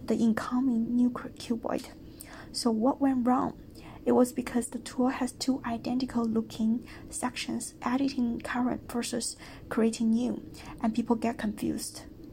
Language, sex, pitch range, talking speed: English, female, 230-255 Hz, 130 wpm